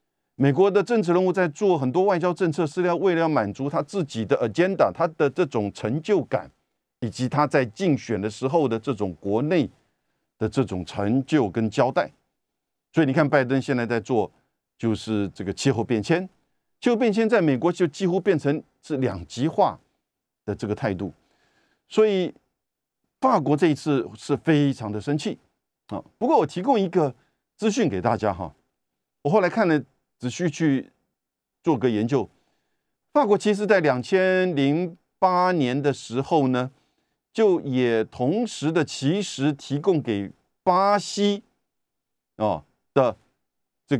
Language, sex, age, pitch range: Chinese, male, 50-69, 130-195 Hz